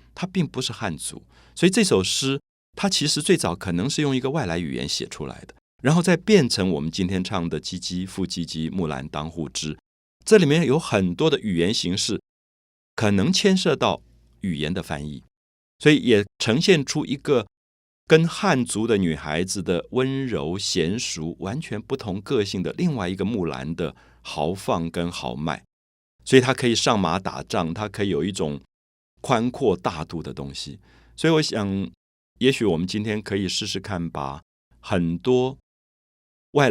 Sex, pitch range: male, 80-110 Hz